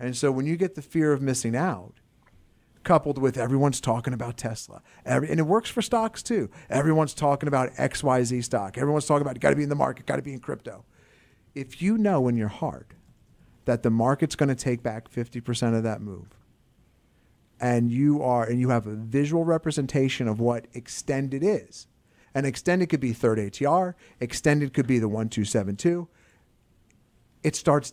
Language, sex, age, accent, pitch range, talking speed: English, male, 40-59, American, 115-145 Hz, 180 wpm